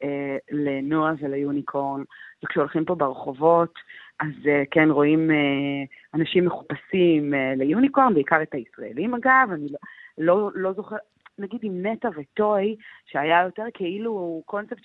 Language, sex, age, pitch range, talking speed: Hebrew, female, 30-49, 155-205 Hz, 105 wpm